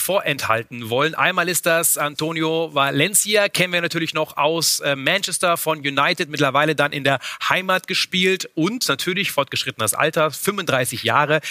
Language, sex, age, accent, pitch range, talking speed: German, male, 30-49, German, 130-170 Hz, 140 wpm